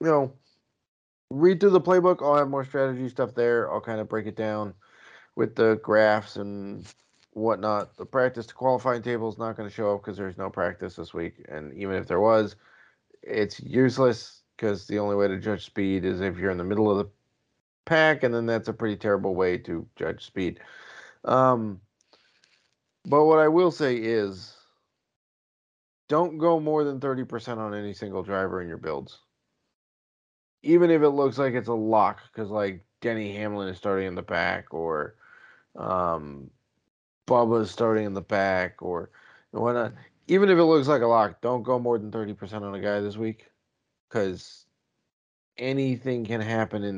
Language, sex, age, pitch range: English, male, 30-49, 100-130 Hz